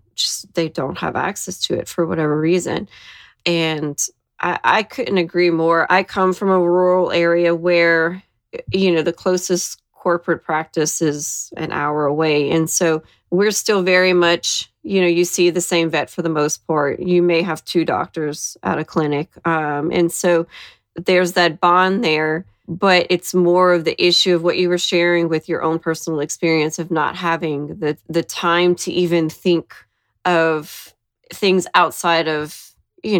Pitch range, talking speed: 155-180 Hz, 170 wpm